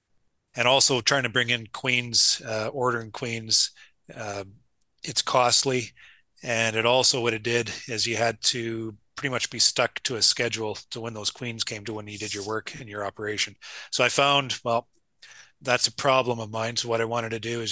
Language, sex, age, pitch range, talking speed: English, male, 30-49, 105-125 Hz, 205 wpm